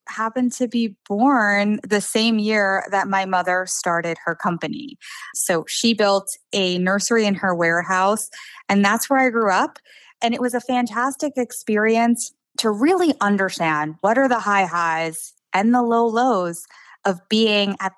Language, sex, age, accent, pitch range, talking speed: English, female, 20-39, American, 175-225 Hz, 160 wpm